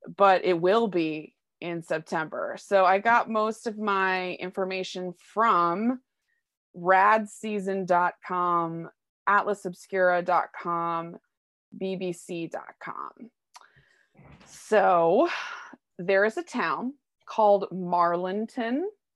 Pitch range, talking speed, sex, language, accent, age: 175-210 Hz, 75 wpm, female, English, American, 20-39